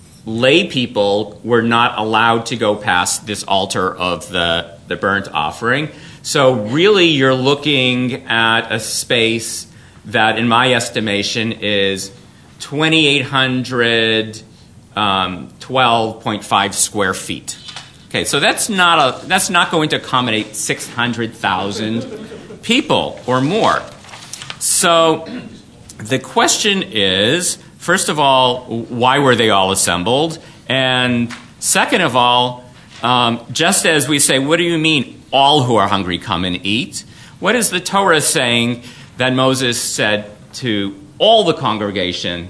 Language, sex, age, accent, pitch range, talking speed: English, male, 40-59, American, 105-130 Hz, 125 wpm